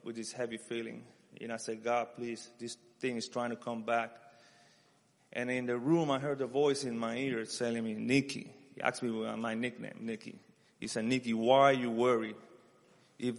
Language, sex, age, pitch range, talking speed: English, male, 30-49, 120-145 Hz, 195 wpm